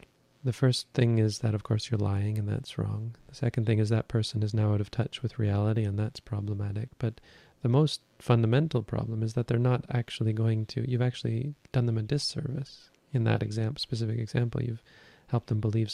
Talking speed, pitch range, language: 205 wpm, 110-130 Hz, English